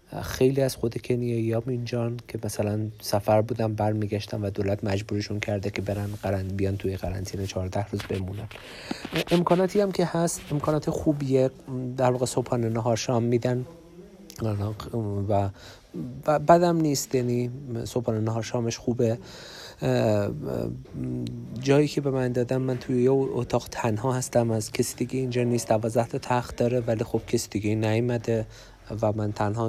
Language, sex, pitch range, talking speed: Persian, male, 105-130 Hz, 140 wpm